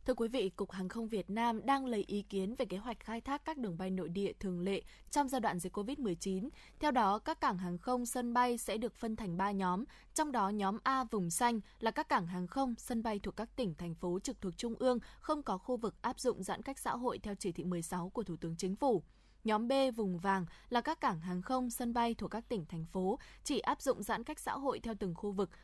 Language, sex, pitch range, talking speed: Vietnamese, female, 190-245 Hz, 260 wpm